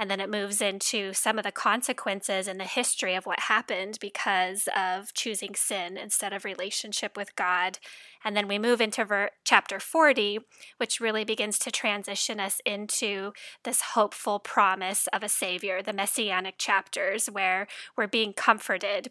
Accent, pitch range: American, 195-220 Hz